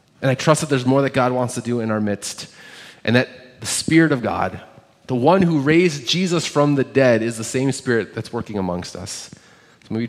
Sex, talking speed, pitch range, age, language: male, 230 wpm, 115-145 Hz, 30-49, English